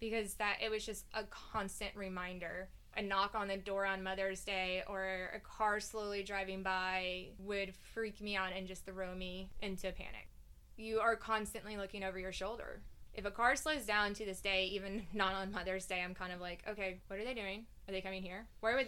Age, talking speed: 10-29, 215 wpm